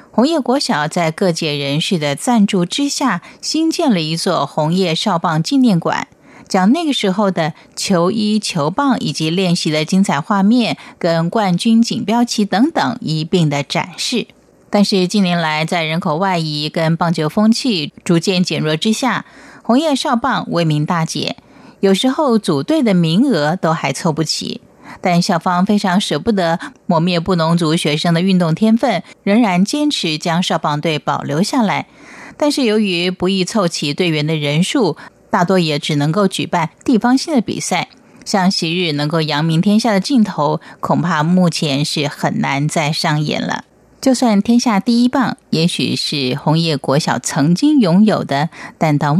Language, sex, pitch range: Chinese, female, 155-225 Hz